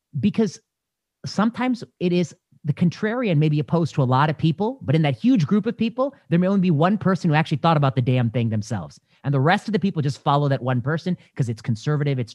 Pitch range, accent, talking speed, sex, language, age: 130-185 Hz, American, 240 wpm, male, English, 30-49